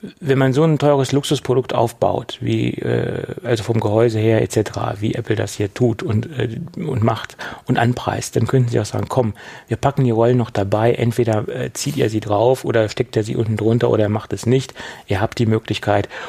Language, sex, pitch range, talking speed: German, male, 110-130 Hz, 215 wpm